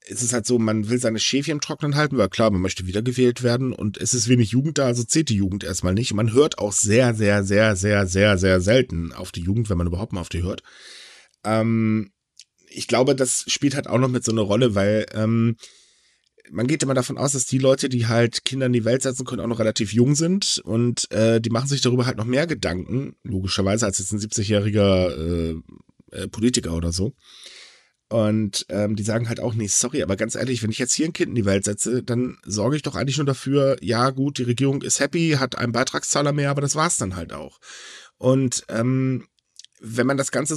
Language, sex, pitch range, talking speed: German, male, 105-130 Hz, 230 wpm